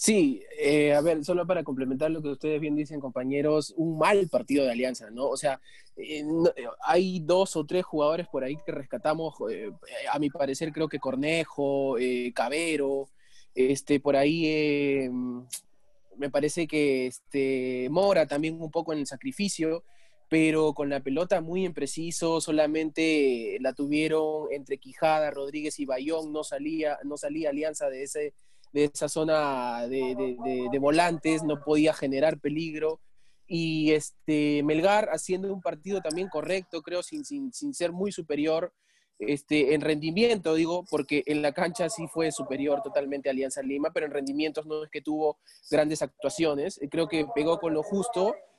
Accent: Argentinian